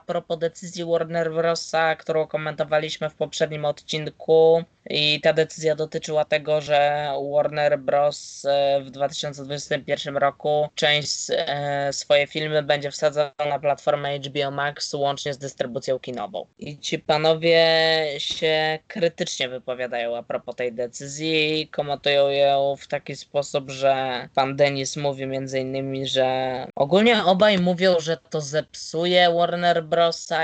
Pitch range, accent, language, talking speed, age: 135-165 Hz, native, Polish, 125 wpm, 20-39